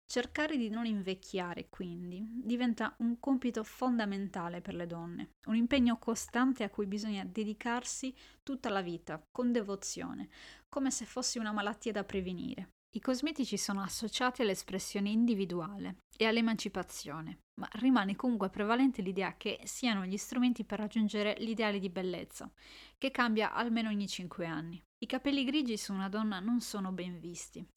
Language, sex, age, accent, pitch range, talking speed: Italian, female, 20-39, native, 195-245 Hz, 150 wpm